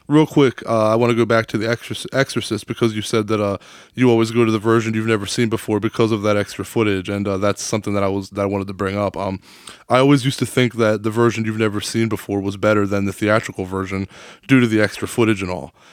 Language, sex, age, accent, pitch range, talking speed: English, male, 20-39, American, 105-125 Hz, 265 wpm